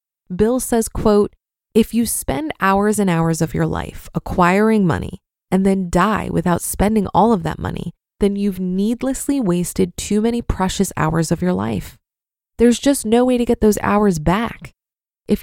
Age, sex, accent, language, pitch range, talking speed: 20-39, female, American, English, 185-235 Hz, 170 wpm